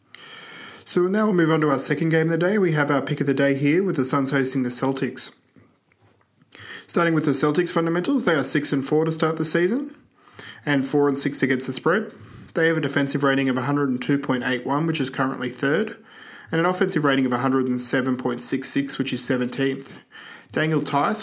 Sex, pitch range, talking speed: male, 130-160 Hz, 195 wpm